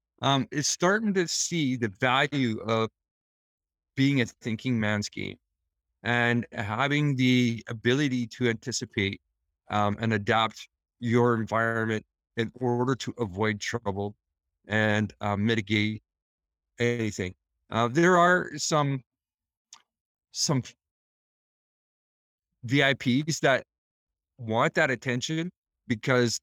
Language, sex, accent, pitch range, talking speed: English, male, American, 105-135 Hz, 100 wpm